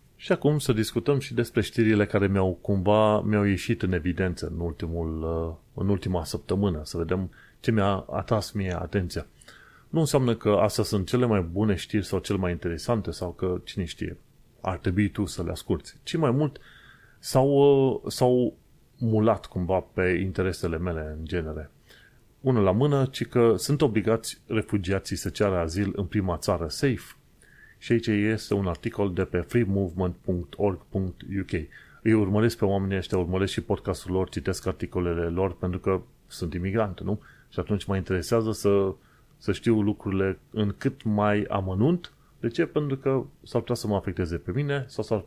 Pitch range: 90-115 Hz